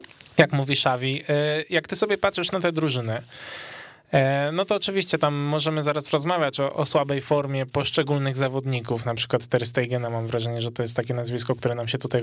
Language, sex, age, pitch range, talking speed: Polish, male, 20-39, 140-170 Hz, 185 wpm